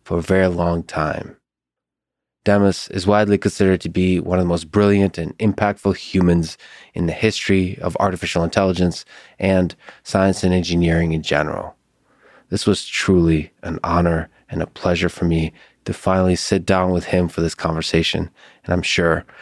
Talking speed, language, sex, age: 165 wpm, English, male, 20-39